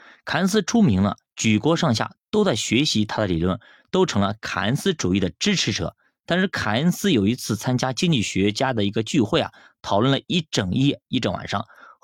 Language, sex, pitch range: Chinese, male, 95-140 Hz